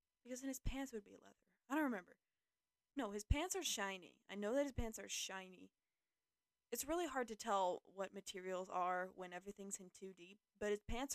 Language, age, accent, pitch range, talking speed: English, 20-39, American, 190-225 Hz, 205 wpm